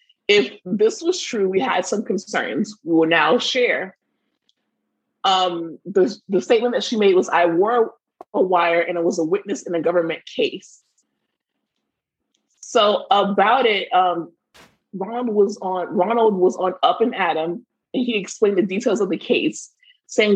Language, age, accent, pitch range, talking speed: English, 20-39, American, 180-270 Hz, 160 wpm